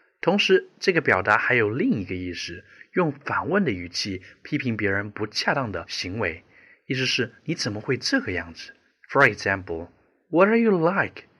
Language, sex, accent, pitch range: Chinese, male, native, 95-150 Hz